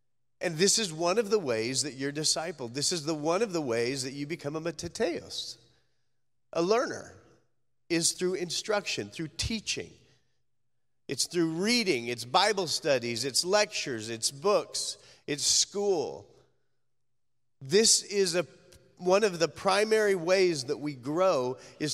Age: 40-59